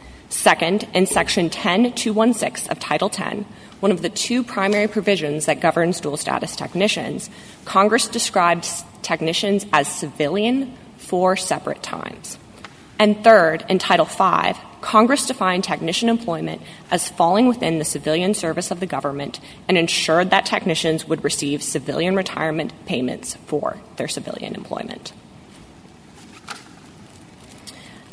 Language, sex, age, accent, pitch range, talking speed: English, female, 20-39, American, 165-210 Hz, 125 wpm